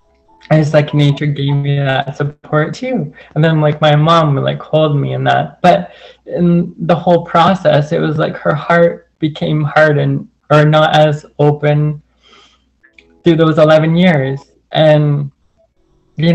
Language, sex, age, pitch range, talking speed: English, male, 20-39, 145-175 Hz, 150 wpm